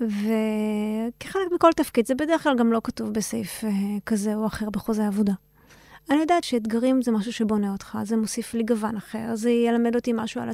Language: Hebrew